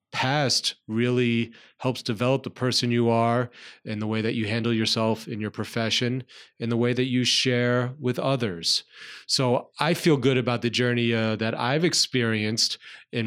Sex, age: male, 30-49